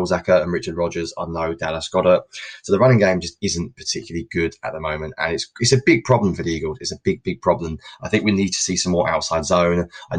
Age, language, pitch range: 20-39, English, 80-90 Hz